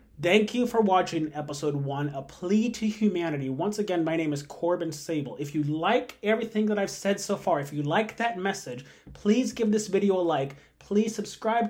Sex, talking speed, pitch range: male, 200 wpm, 155-195 Hz